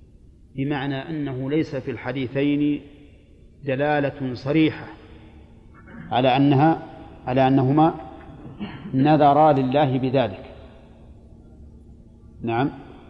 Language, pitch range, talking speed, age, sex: Arabic, 120-150 Hz, 70 wpm, 40-59, male